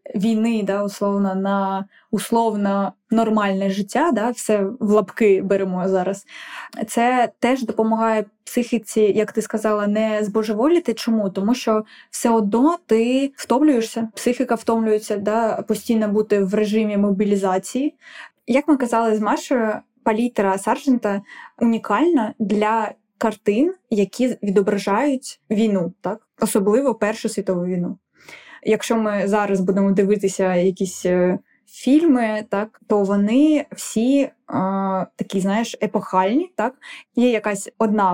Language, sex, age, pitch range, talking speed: Ukrainian, female, 20-39, 205-235 Hz, 120 wpm